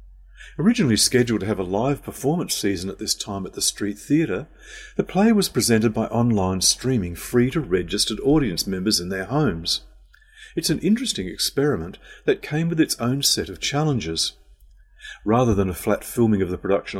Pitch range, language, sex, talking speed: 95-140 Hz, English, male, 175 wpm